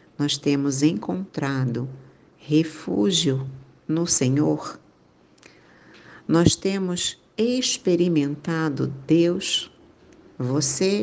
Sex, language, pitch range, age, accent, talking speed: female, Portuguese, 145-175 Hz, 50-69, Brazilian, 60 wpm